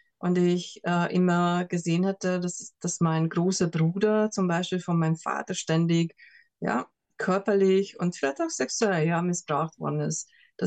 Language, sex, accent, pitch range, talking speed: German, female, German, 170-200 Hz, 155 wpm